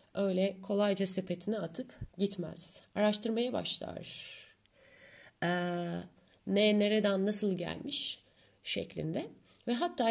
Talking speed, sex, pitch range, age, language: 85 wpm, female, 175-245 Hz, 30-49, Turkish